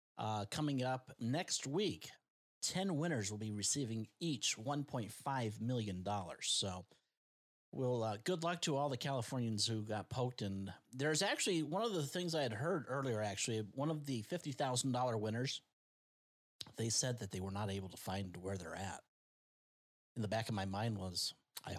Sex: male